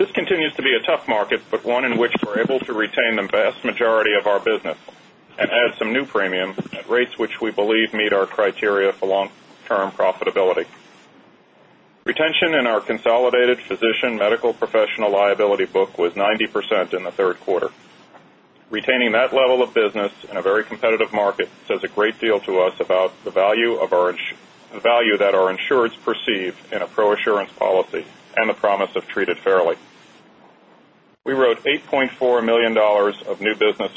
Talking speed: 165 wpm